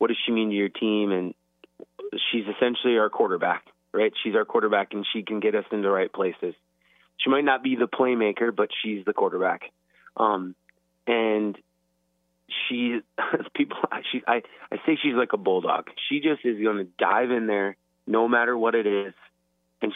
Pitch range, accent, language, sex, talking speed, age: 90-115 Hz, American, English, male, 185 wpm, 30-49